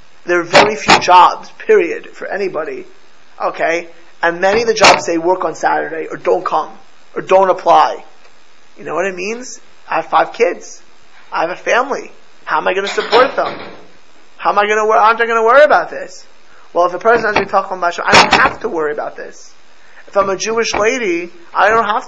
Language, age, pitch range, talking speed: English, 20-39, 175-235 Hz, 215 wpm